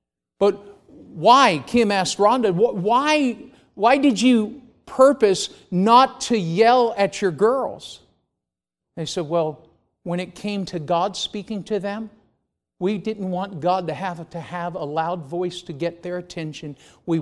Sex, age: male, 50-69